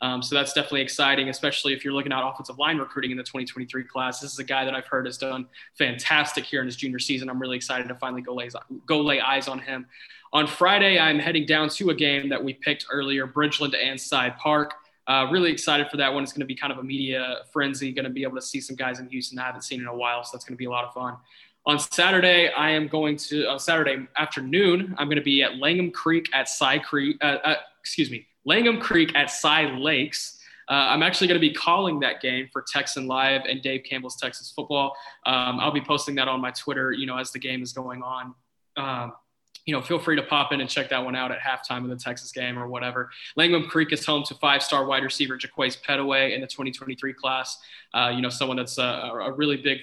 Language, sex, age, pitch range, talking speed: English, male, 20-39, 130-150 Hz, 250 wpm